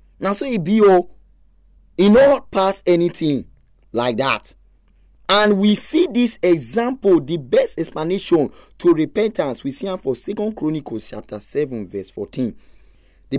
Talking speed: 140 wpm